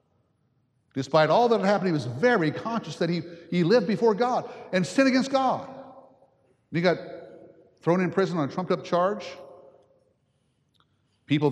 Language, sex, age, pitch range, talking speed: English, male, 60-79, 135-180 Hz, 150 wpm